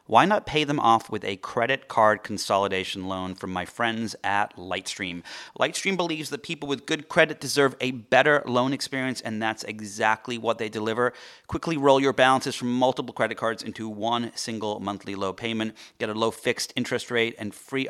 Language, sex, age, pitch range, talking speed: English, male, 30-49, 105-135 Hz, 190 wpm